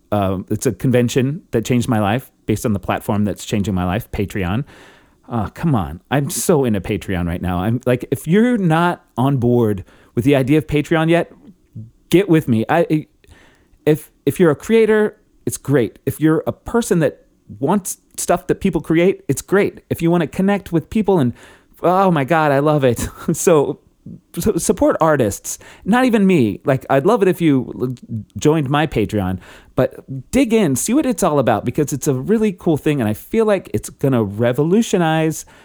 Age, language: 30-49, English